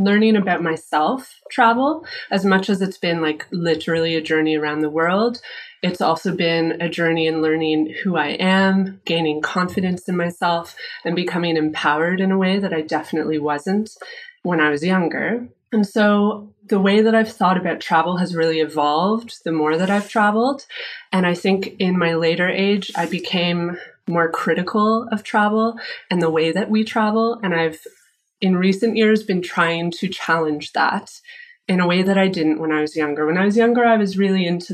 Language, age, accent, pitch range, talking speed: English, 20-39, American, 165-210 Hz, 185 wpm